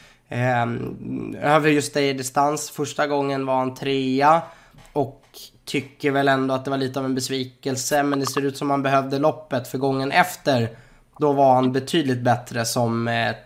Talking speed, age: 185 wpm, 20-39